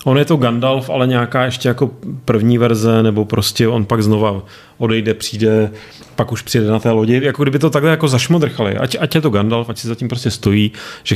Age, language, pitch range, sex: 30-49, Czech, 105-120 Hz, male